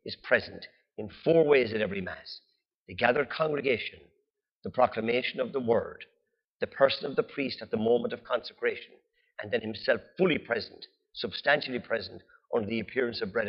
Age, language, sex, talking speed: 50-69, English, male, 170 wpm